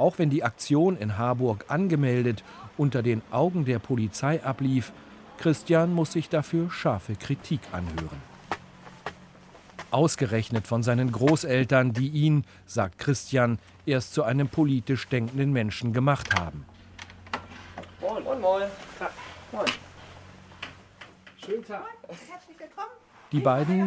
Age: 40-59